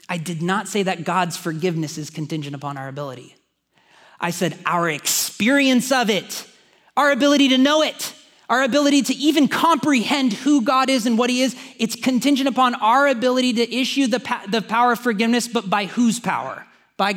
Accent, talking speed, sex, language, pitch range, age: American, 180 wpm, male, English, 185-255 Hz, 30-49